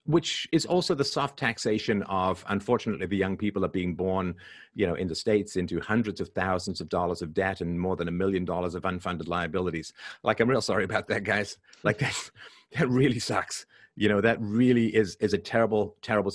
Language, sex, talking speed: English, male, 210 wpm